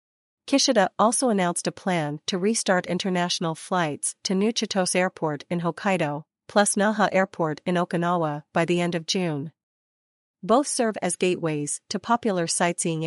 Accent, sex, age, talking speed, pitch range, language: American, female, 40-59, 145 wpm, 160-205 Hz, English